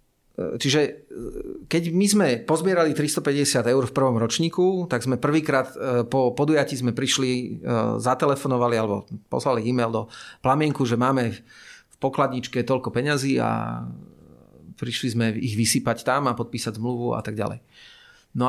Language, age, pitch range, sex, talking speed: Slovak, 40-59, 120-140 Hz, male, 135 wpm